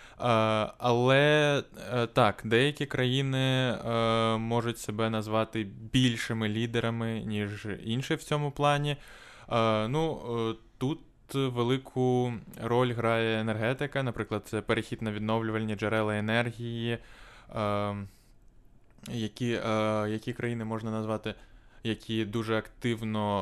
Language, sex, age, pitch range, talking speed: Ukrainian, male, 20-39, 105-120 Hz, 95 wpm